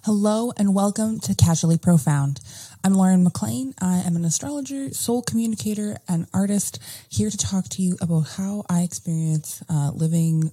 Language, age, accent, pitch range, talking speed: English, 20-39, American, 125-185 Hz, 160 wpm